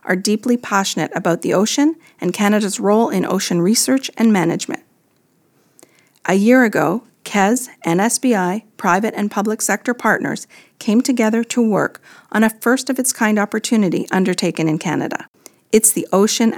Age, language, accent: 40-59, English, American